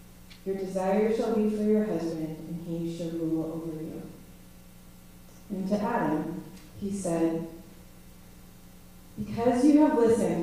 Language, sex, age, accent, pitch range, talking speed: English, female, 30-49, American, 160-205 Hz, 125 wpm